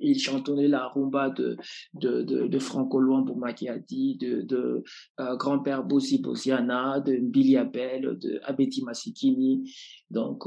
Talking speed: 140 wpm